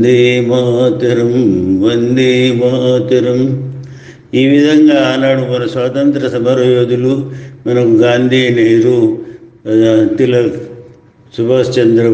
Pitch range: 110-135 Hz